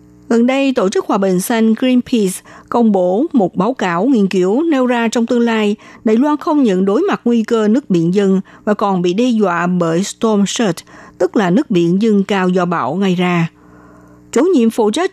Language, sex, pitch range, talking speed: Vietnamese, female, 185-245 Hz, 210 wpm